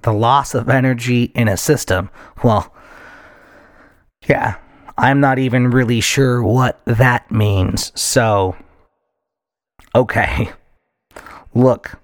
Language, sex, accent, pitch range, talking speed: English, male, American, 115-140 Hz, 100 wpm